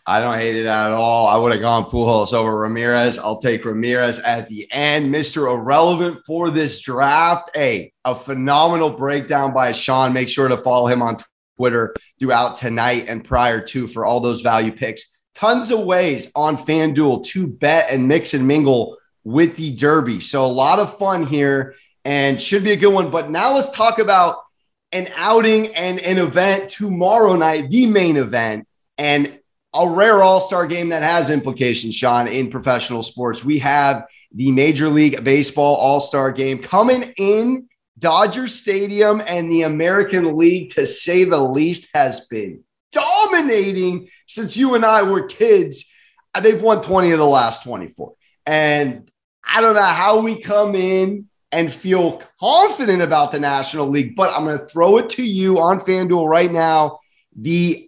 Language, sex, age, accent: English, male, 30-49, American